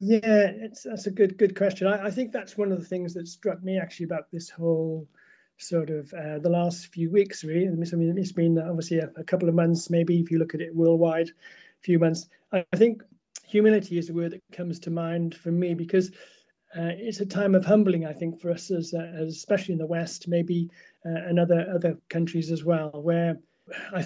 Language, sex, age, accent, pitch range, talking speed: English, male, 30-49, British, 165-185 Hz, 225 wpm